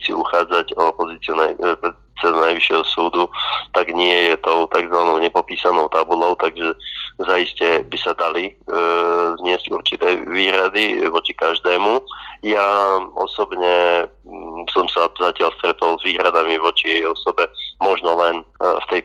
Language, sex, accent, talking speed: English, male, Czech, 130 wpm